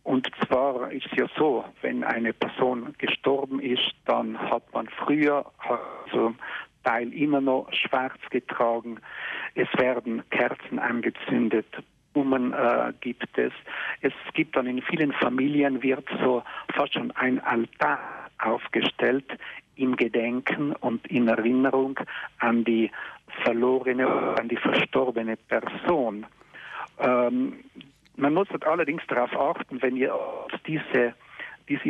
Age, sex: 60-79, male